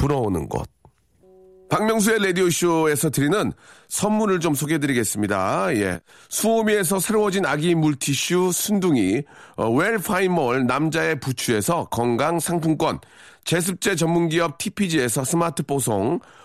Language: Korean